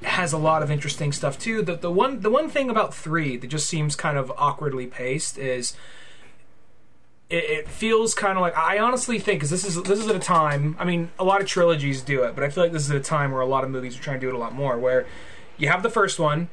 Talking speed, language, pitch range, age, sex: 275 wpm, English, 140-170 Hz, 20-39, male